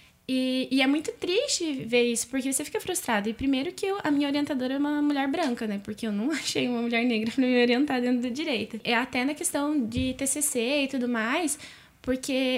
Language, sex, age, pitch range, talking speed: Portuguese, female, 10-29, 240-295 Hz, 215 wpm